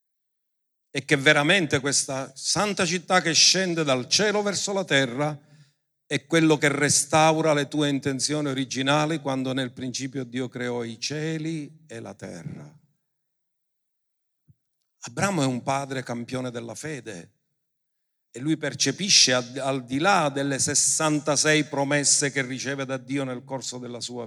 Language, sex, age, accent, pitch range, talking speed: Italian, male, 50-69, native, 140-175 Hz, 135 wpm